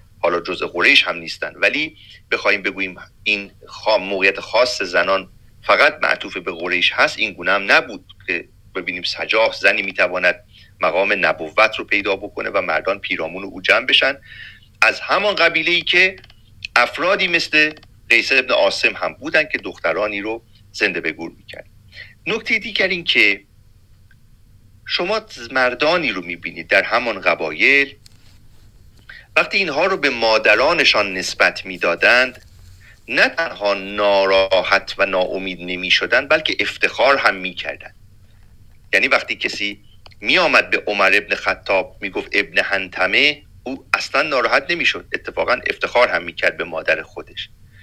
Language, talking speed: Persian, 135 wpm